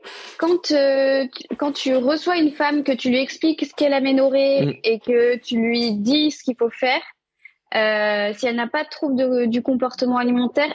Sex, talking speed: female, 190 wpm